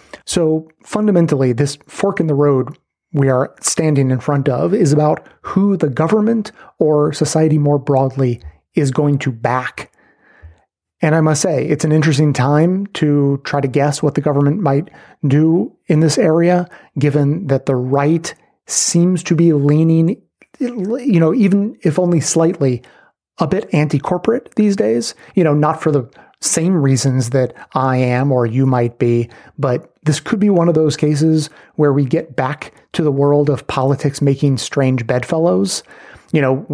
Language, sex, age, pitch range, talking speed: English, male, 30-49, 135-165 Hz, 165 wpm